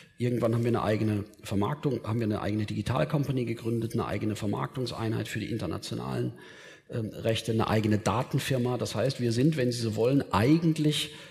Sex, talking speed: male, 170 wpm